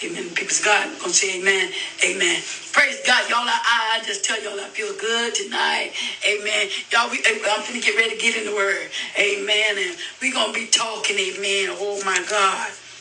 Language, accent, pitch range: English, American, 200-235 Hz